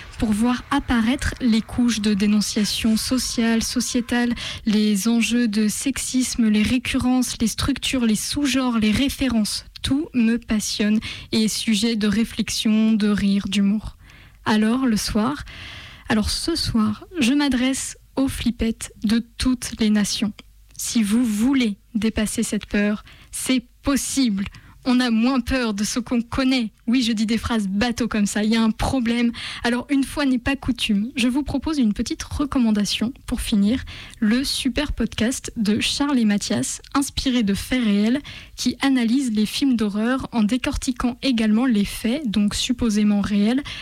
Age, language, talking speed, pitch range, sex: 10-29, French, 155 wpm, 215-255 Hz, female